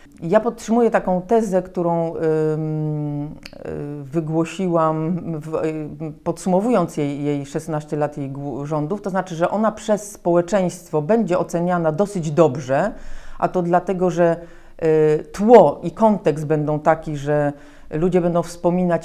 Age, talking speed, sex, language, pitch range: 40-59, 115 wpm, female, Polish, 150-185 Hz